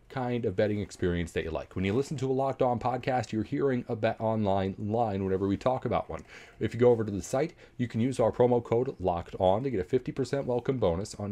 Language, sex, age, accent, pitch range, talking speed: English, male, 40-59, American, 95-120 Hz, 250 wpm